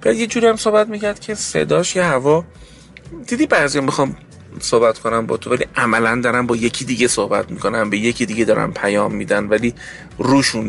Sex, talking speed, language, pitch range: male, 175 wpm, Persian, 110-175 Hz